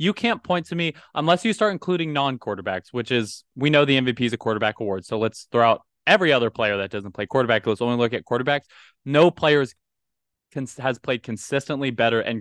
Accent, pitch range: American, 110-140 Hz